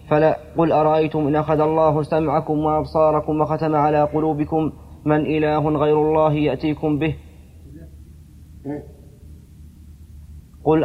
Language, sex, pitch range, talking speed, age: Arabic, male, 145-155 Hz, 100 wpm, 30-49